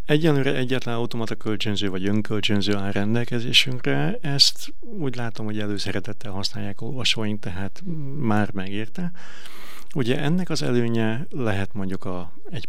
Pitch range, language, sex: 100-130 Hz, Hungarian, male